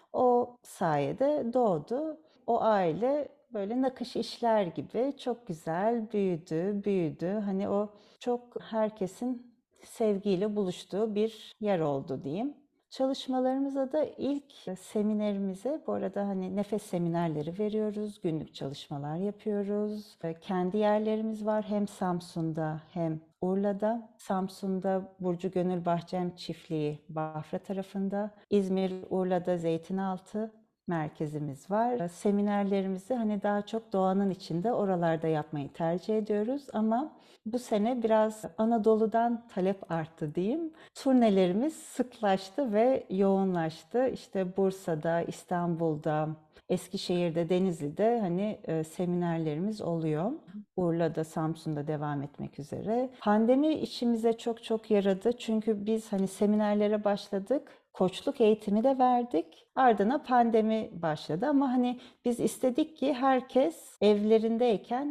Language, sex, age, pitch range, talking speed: Turkish, female, 60-79, 180-235 Hz, 105 wpm